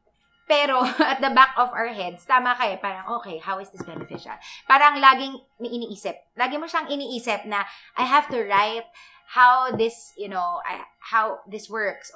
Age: 20-39